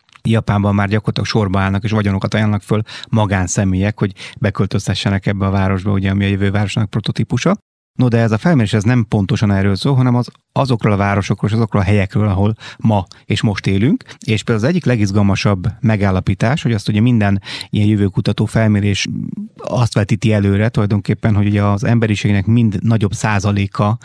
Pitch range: 100-120 Hz